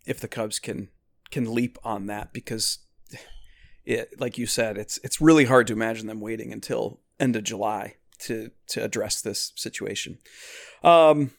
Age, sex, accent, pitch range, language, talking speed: 30-49, male, American, 110-130 Hz, English, 165 wpm